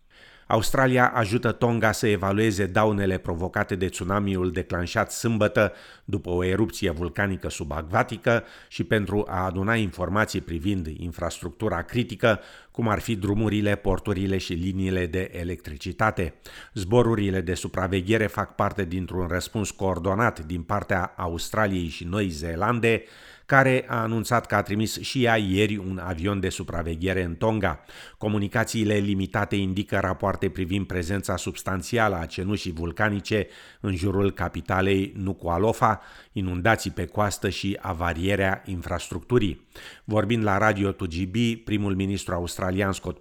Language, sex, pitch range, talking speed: Romanian, male, 90-110 Hz, 125 wpm